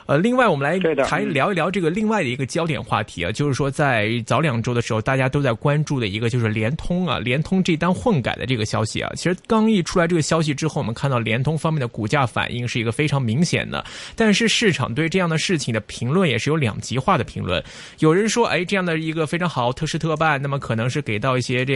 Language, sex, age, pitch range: Chinese, male, 20-39, 120-160 Hz